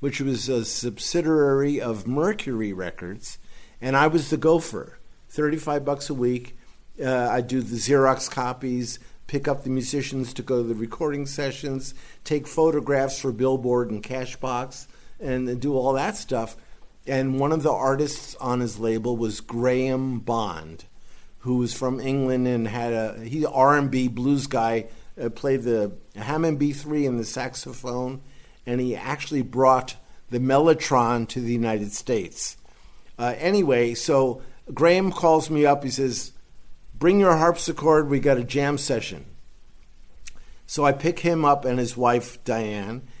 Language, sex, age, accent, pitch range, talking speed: English, male, 50-69, American, 115-140 Hz, 155 wpm